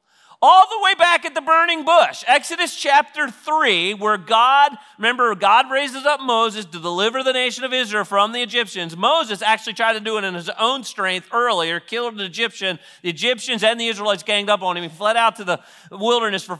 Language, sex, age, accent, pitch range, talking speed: English, male, 40-59, American, 200-290 Hz, 205 wpm